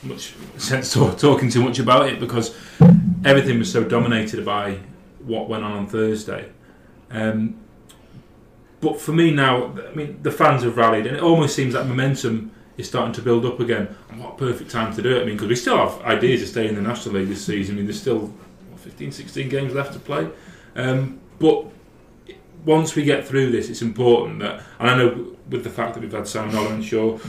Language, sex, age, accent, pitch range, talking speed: English, male, 30-49, British, 105-125 Hz, 210 wpm